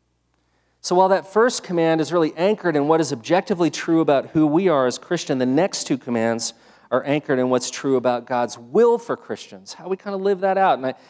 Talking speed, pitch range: 220 wpm, 120-170 Hz